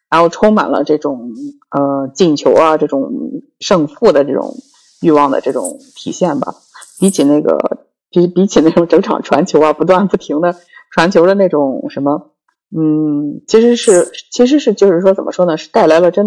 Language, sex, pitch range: Chinese, female, 150-215 Hz